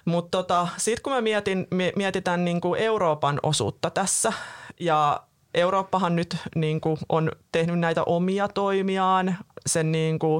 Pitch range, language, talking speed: 150-170 Hz, Finnish, 110 wpm